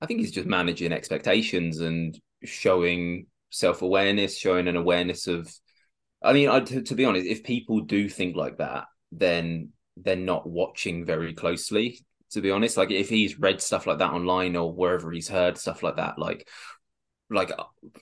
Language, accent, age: English, British, 20-39